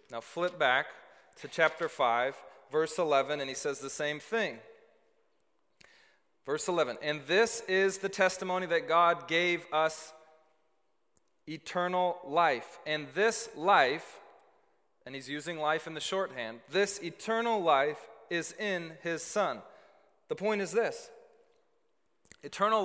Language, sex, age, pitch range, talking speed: English, male, 30-49, 145-195 Hz, 130 wpm